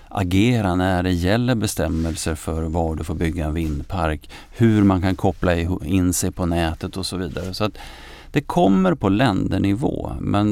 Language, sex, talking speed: Swedish, male, 170 wpm